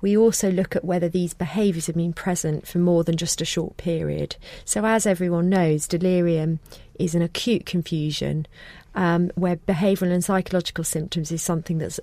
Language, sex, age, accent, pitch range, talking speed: English, female, 40-59, British, 160-185 Hz, 175 wpm